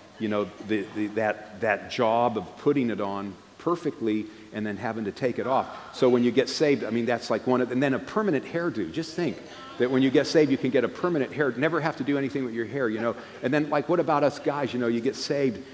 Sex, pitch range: male, 115-140 Hz